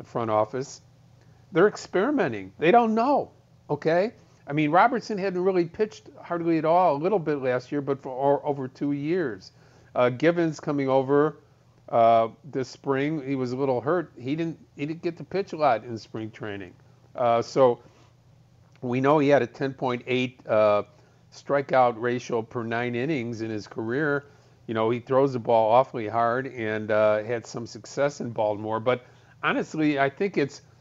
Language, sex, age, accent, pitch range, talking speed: English, male, 50-69, American, 115-140 Hz, 170 wpm